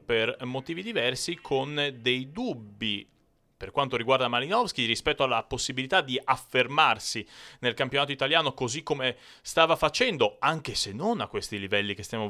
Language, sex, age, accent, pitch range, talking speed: Italian, male, 30-49, native, 105-145 Hz, 145 wpm